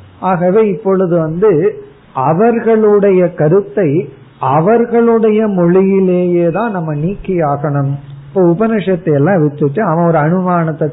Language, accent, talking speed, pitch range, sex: Tamil, native, 95 wpm, 150-195 Hz, male